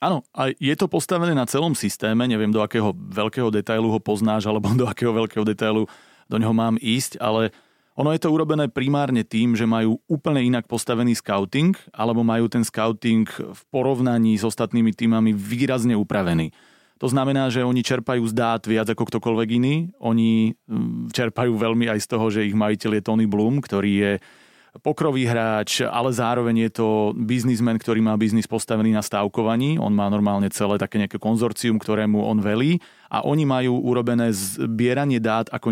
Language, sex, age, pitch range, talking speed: Slovak, male, 30-49, 110-130 Hz, 170 wpm